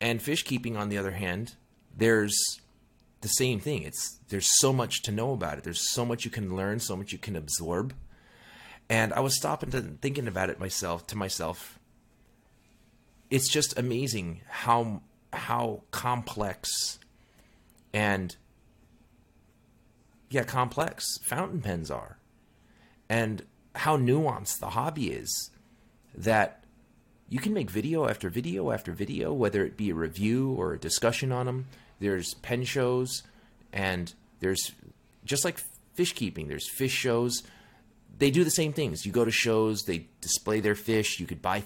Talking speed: 155 wpm